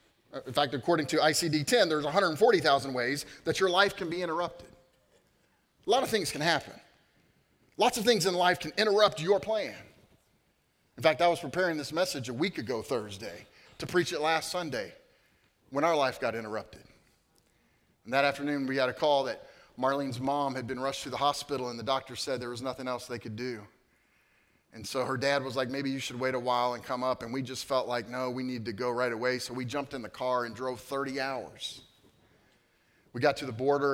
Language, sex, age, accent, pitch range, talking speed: English, male, 30-49, American, 130-160 Hz, 210 wpm